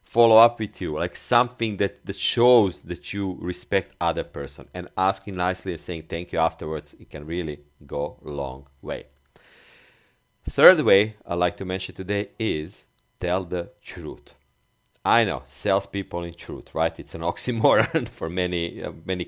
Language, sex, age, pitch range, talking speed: English, male, 40-59, 80-95 Hz, 160 wpm